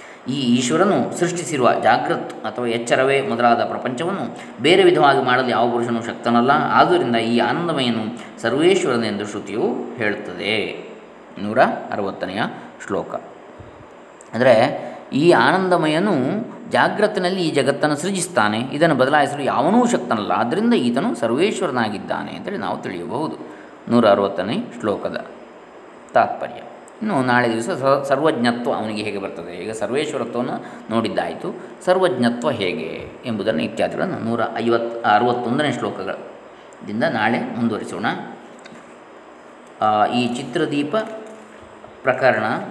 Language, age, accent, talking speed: Kannada, 20-39, native, 95 wpm